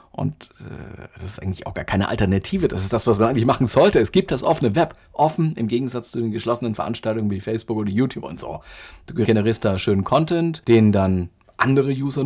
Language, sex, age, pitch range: German, male, 40-59, 110-150 Hz